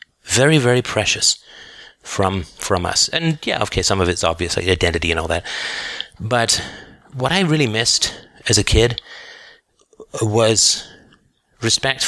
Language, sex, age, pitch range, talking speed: English, male, 30-49, 95-125 Hz, 140 wpm